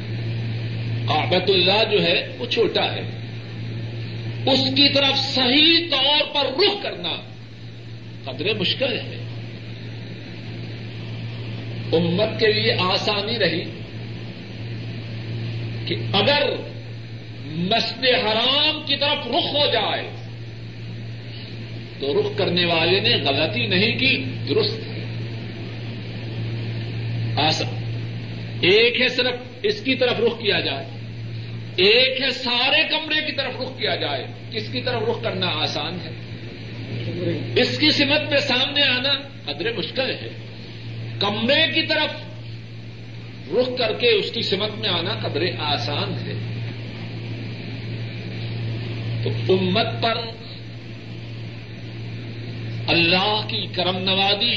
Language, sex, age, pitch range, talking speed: Urdu, male, 50-69, 115-165 Hz, 105 wpm